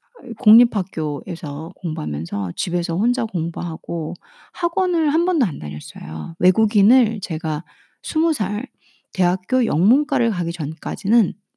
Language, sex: Korean, female